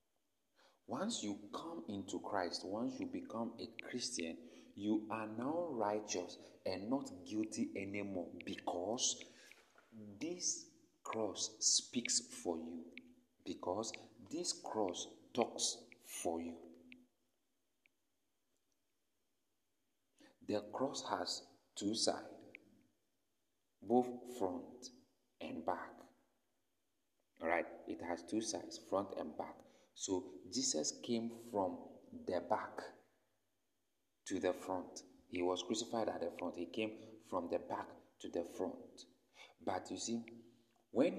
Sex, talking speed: male, 110 wpm